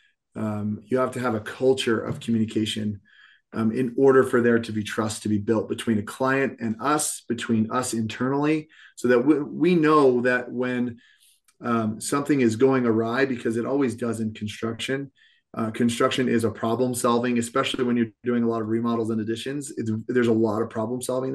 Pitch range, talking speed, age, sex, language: 110-130 Hz, 190 wpm, 30-49, male, English